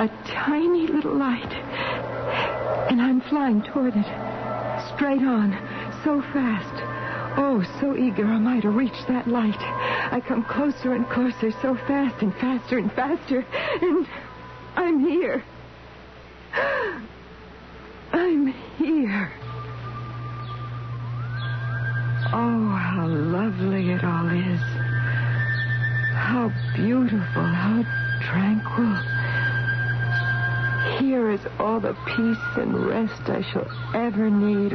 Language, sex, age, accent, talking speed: English, female, 60-79, American, 100 wpm